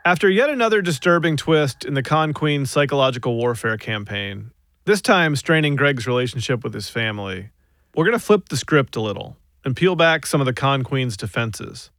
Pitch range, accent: 115-160 Hz, American